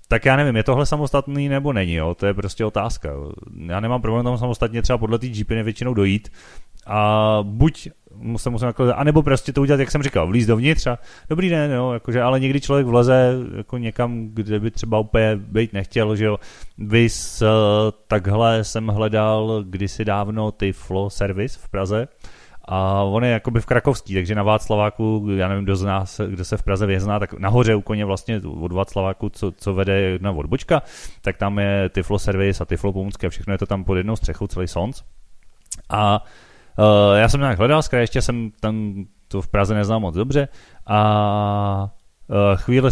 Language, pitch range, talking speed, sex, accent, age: Czech, 100-130 Hz, 190 wpm, male, native, 30-49